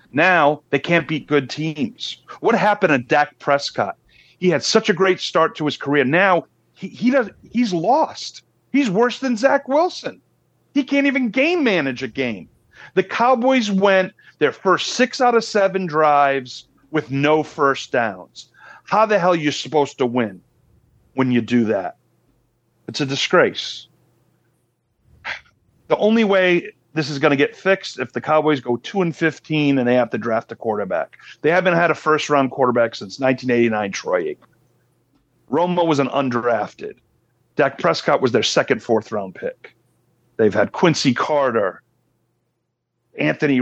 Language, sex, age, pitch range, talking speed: English, male, 40-59, 130-195 Hz, 160 wpm